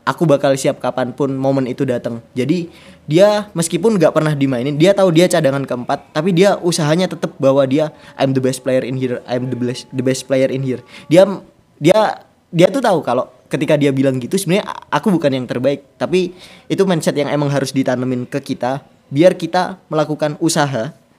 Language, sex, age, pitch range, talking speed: Indonesian, male, 20-39, 125-155 Hz, 195 wpm